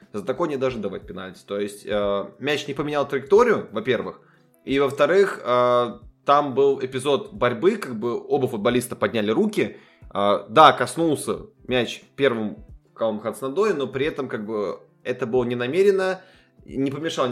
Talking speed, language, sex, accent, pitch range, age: 155 wpm, Russian, male, native, 125-165 Hz, 20-39